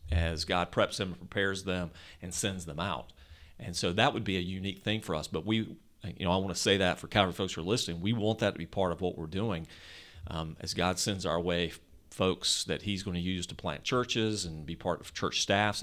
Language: English